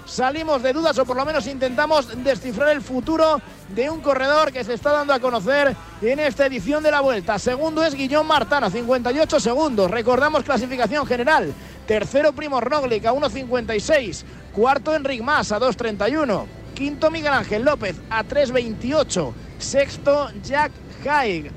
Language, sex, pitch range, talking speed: Spanish, male, 220-280 Hz, 150 wpm